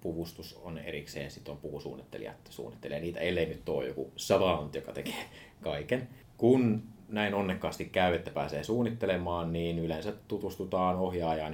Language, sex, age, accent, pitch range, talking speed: Finnish, male, 30-49, native, 80-105 Hz, 130 wpm